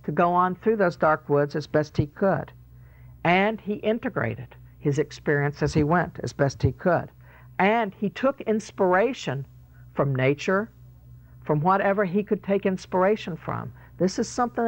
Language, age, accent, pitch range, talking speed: English, 60-79, American, 125-200 Hz, 160 wpm